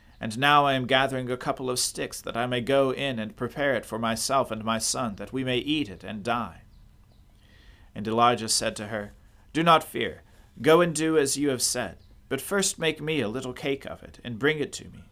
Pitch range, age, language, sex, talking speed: 105-135 Hz, 40-59, English, male, 230 wpm